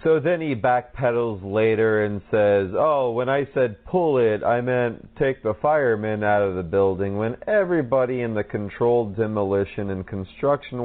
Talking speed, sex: 165 wpm, male